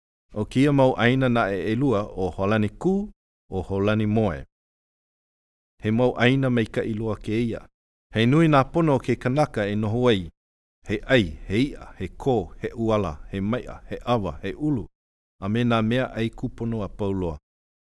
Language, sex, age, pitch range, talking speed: English, male, 50-69, 85-115 Hz, 165 wpm